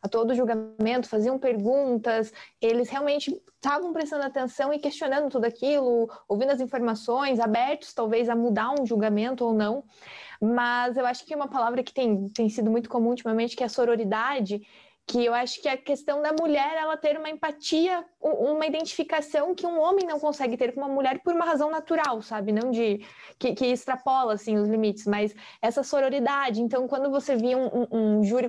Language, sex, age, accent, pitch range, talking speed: English, female, 20-39, Brazilian, 235-285 Hz, 185 wpm